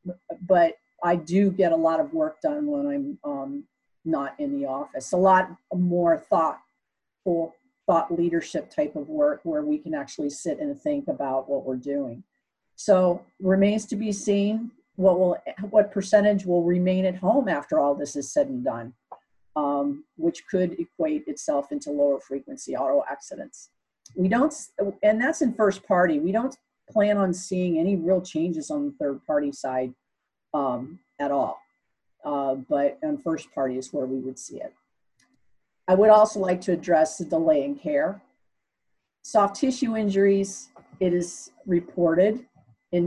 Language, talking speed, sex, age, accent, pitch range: English, 160 wpm, female, 50-69, American, 175-285 Hz